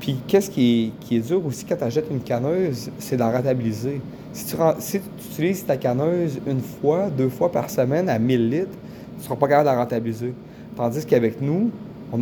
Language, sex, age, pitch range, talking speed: French, male, 30-49, 120-155 Hz, 215 wpm